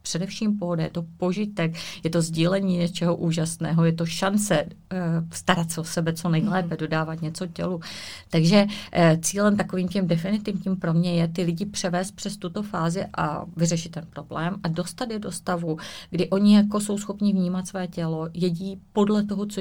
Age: 30-49